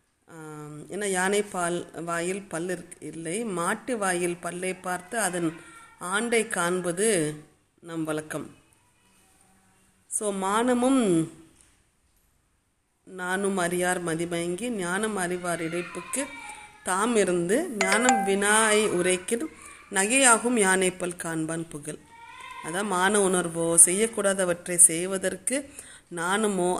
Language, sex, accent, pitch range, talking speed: Tamil, female, native, 165-215 Hz, 85 wpm